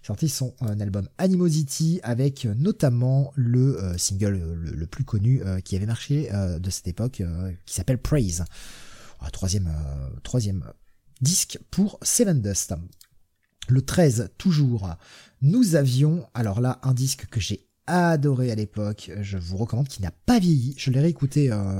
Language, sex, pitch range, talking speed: French, male, 105-150 Hz, 140 wpm